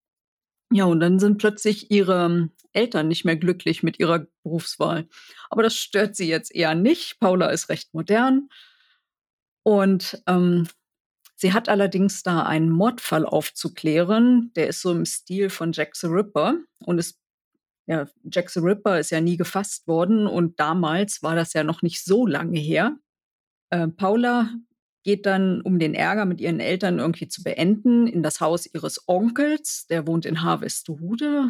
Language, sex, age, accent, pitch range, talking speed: German, female, 40-59, German, 165-220 Hz, 160 wpm